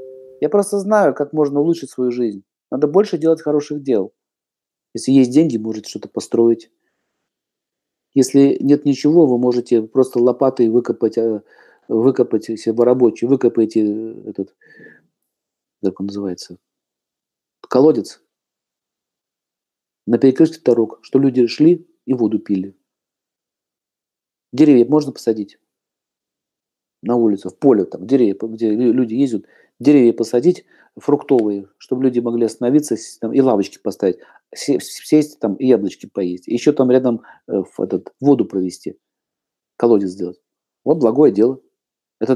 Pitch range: 115-145 Hz